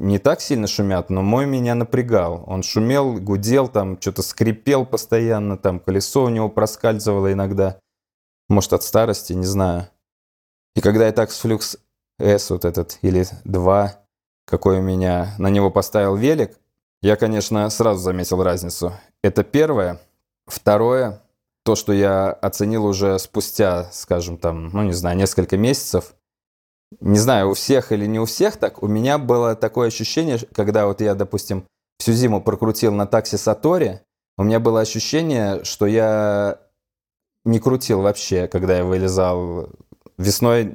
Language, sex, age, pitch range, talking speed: Russian, male, 20-39, 95-115 Hz, 150 wpm